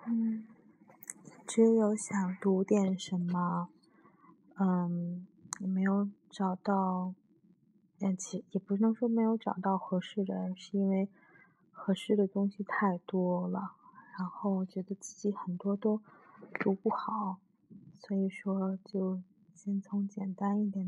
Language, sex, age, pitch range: Chinese, female, 20-39, 190-210 Hz